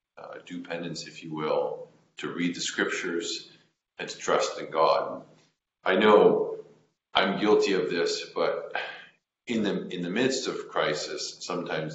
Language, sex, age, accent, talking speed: English, male, 40-59, American, 150 wpm